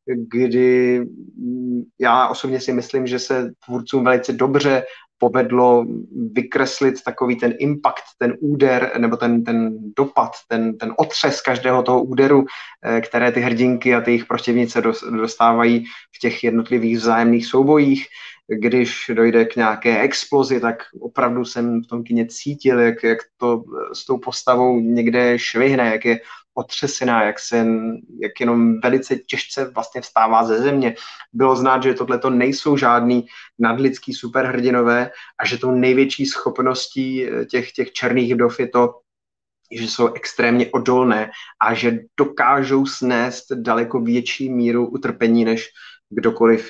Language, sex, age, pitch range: Czech, male, 20-39, 115-130 Hz